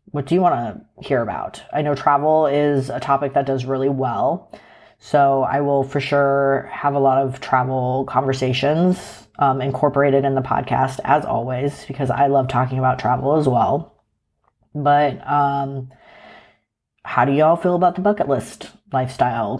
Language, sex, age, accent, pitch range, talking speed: English, female, 30-49, American, 130-145 Hz, 165 wpm